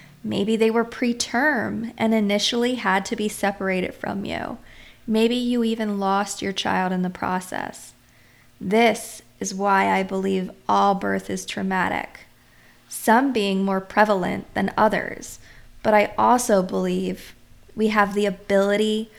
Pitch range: 190-220 Hz